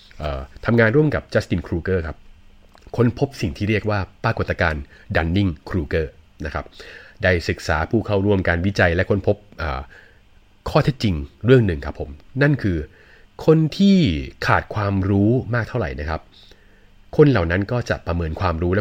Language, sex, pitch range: Thai, male, 85-120 Hz